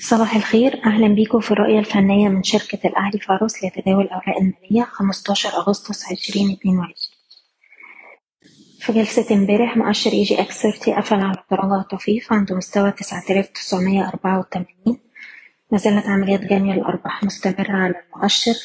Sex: female